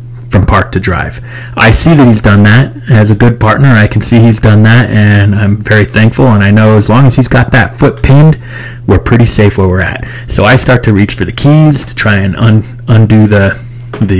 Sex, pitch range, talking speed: male, 100-120 Hz, 235 wpm